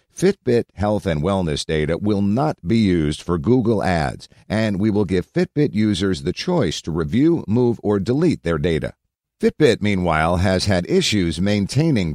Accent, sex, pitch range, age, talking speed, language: American, male, 85-110 Hz, 50-69, 165 wpm, English